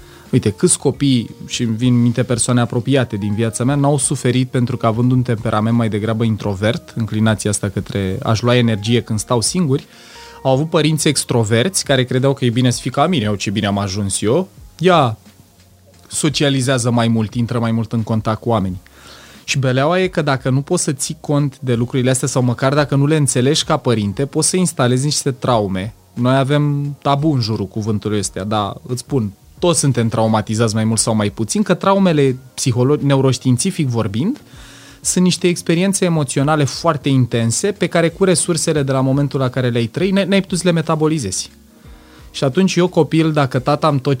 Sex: male